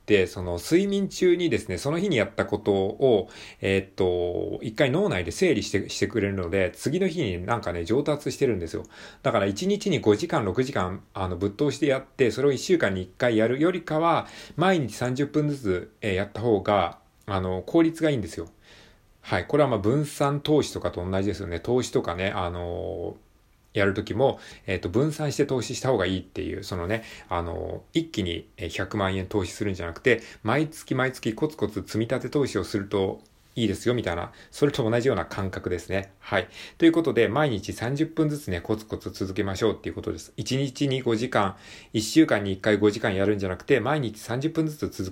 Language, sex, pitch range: Japanese, male, 95-135 Hz